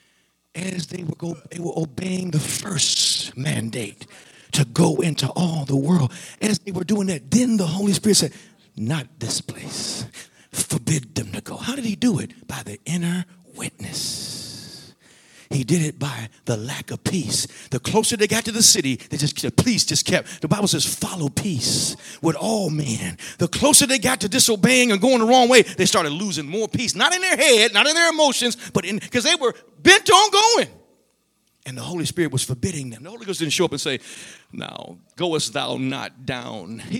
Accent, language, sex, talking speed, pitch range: American, English, male, 200 wpm, 150-205 Hz